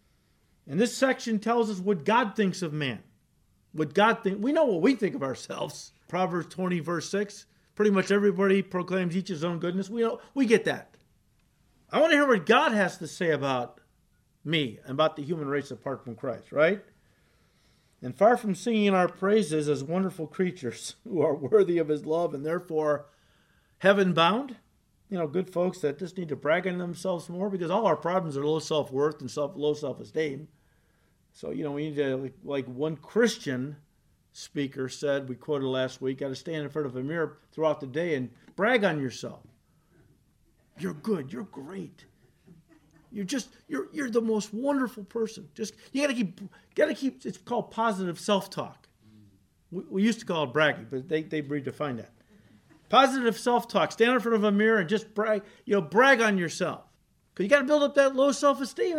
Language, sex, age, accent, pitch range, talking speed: English, male, 50-69, American, 150-215 Hz, 195 wpm